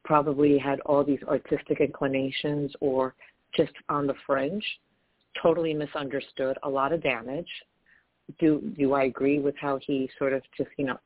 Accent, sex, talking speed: American, female, 155 wpm